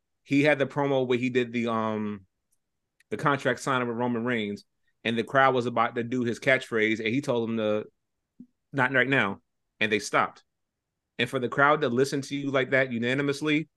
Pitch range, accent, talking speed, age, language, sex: 110-125 Hz, American, 200 wpm, 30-49, English, male